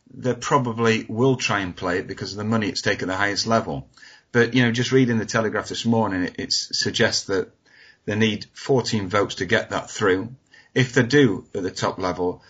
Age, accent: 30-49, British